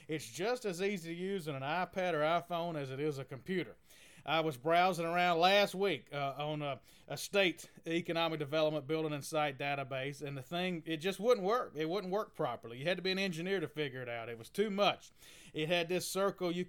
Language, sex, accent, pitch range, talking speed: English, male, American, 150-175 Hz, 225 wpm